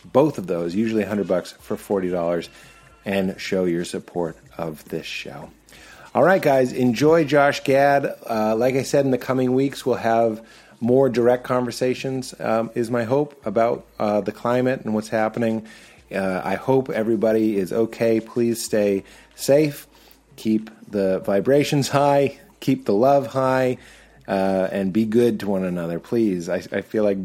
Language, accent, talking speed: English, American, 165 wpm